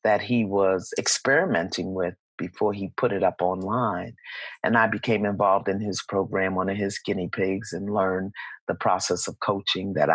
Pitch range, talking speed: 95-115 Hz, 175 wpm